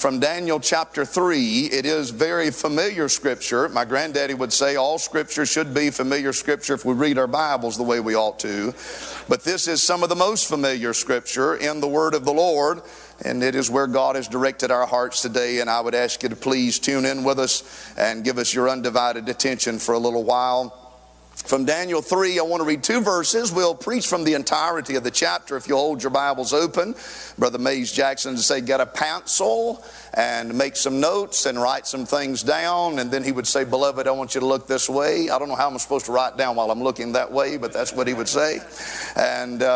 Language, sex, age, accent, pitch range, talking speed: English, male, 50-69, American, 125-160 Hz, 225 wpm